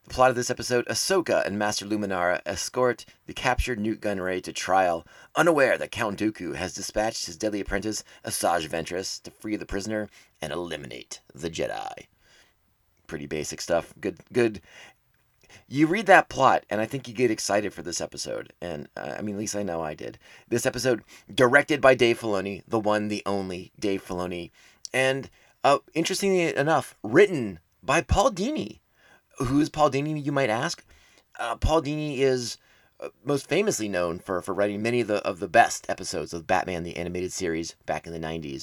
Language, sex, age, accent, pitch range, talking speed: English, male, 30-49, American, 90-125 Hz, 180 wpm